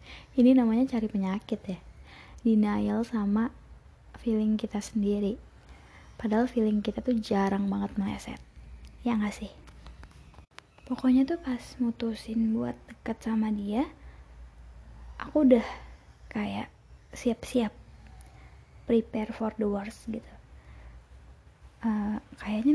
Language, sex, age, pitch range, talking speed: Indonesian, female, 20-39, 205-230 Hz, 105 wpm